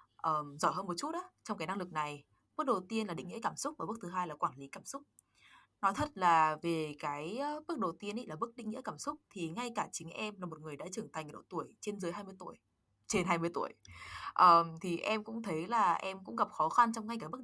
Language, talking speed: Vietnamese, 275 wpm